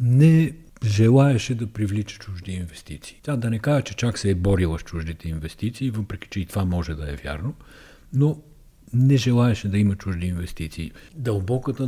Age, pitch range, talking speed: 50-69, 90-110 Hz, 170 wpm